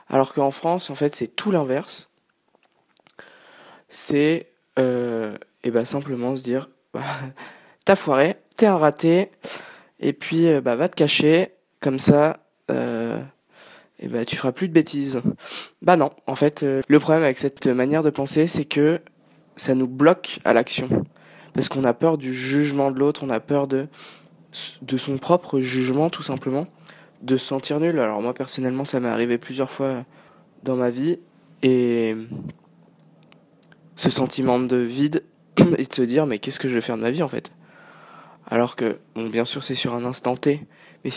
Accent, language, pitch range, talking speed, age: French, French, 130-155 Hz, 170 wpm, 20-39